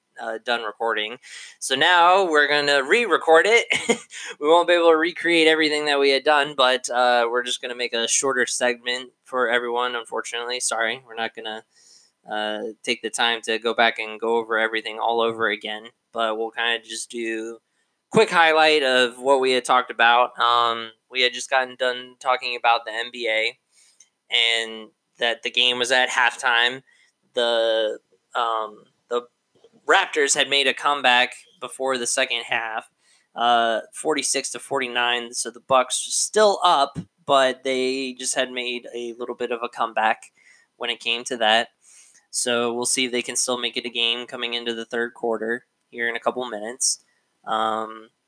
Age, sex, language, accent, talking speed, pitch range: 20-39, male, English, American, 175 wpm, 115-135 Hz